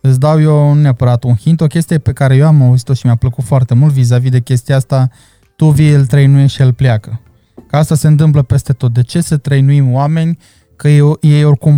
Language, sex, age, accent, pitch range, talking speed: Romanian, male, 20-39, native, 125-155 Hz, 220 wpm